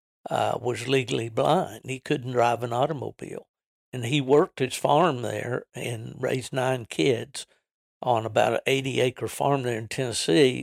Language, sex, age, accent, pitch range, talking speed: English, male, 60-79, American, 120-135 Hz, 150 wpm